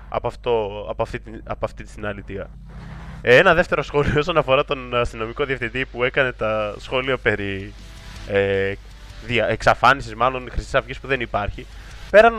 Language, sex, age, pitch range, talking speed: Greek, male, 20-39, 110-150 Hz, 140 wpm